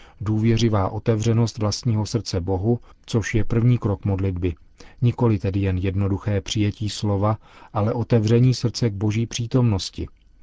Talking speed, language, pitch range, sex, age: 125 wpm, Czech, 100-120 Hz, male, 40-59